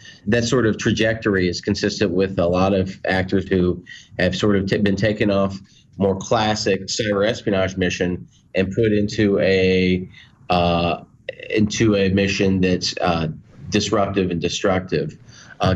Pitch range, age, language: 90-105 Hz, 30-49, English